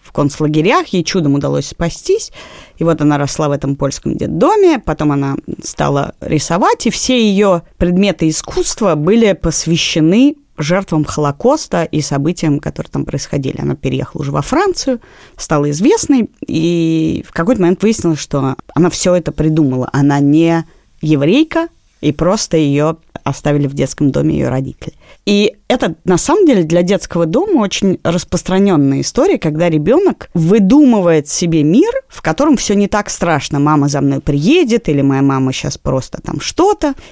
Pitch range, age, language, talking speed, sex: 150-225 Hz, 30-49, Russian, 150 wpm, female